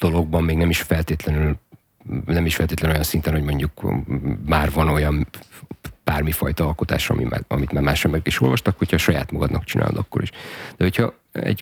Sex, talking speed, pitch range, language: male, 170 wpm, 75-95 Hz, Hungarian